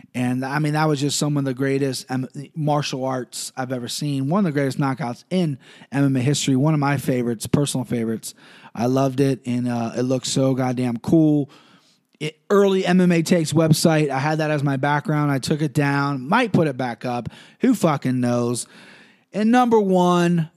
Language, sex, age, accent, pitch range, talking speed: English, male, 30-49, American, 135-165 Hz, 190 wpm